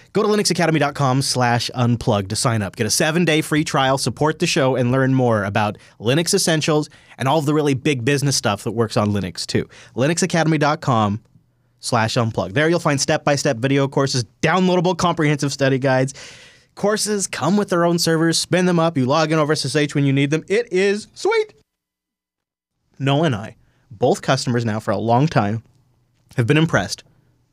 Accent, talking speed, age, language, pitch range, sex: American, 180 wpm, 30-49, English, 125-160 Hz, male